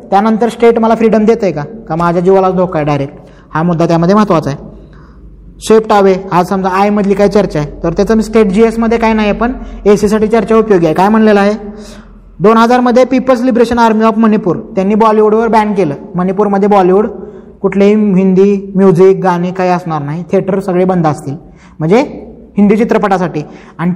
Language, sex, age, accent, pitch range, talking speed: Marathi, male, 20-39, native, 175-215 Hz, 175 wpm